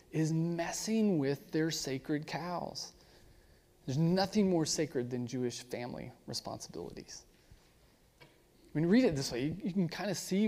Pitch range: 130-170 Hz